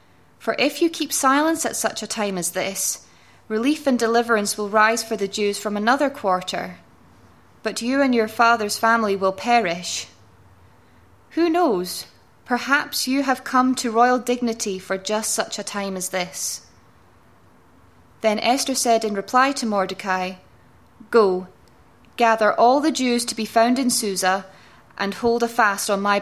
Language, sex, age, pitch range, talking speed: English, female, 20-39, 175-230 Hz, 160 wpm